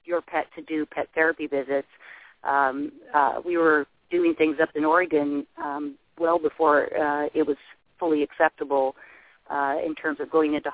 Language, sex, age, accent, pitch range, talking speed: English, female, 40-59, American, 145-160 Hz, 170 wpm